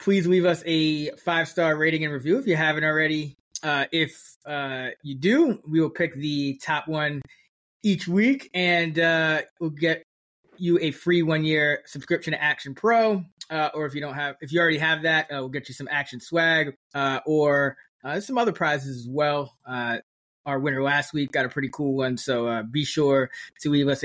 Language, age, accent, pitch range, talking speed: English, 20-39, American, 140-165 Hz, 200 wpm